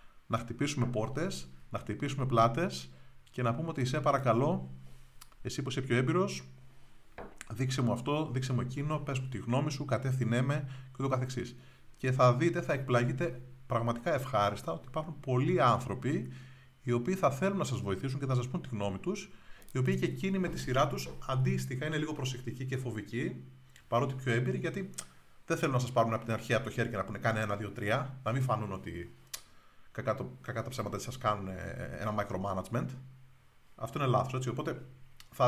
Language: Greek